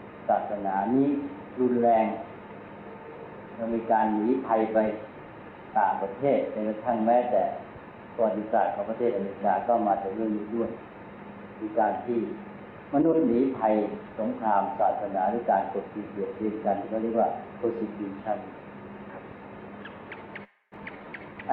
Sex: male